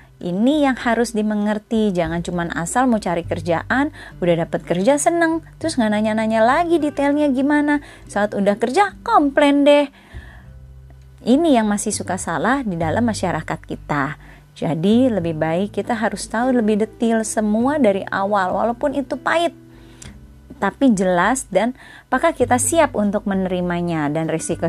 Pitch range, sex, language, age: 160-235 Hz, female, Indonesian, 20-39